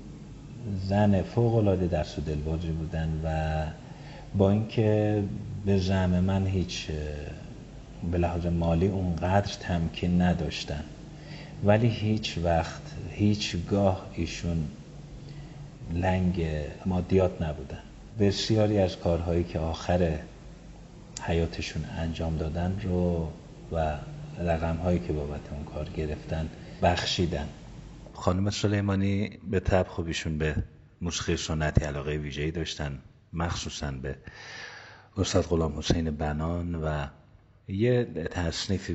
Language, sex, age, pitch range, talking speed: Persian, male, 50-69, 80-100 Hz, 100 wpm